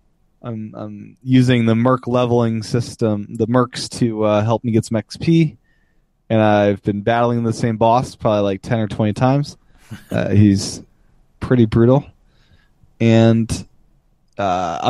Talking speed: 140 wpm